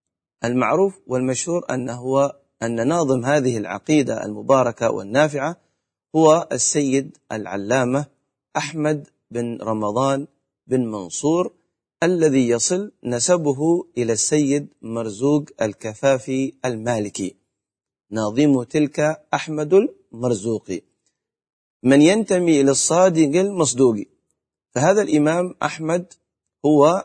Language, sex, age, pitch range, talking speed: Arabic, male, 40-59, 120-150 Hz, 85 wpm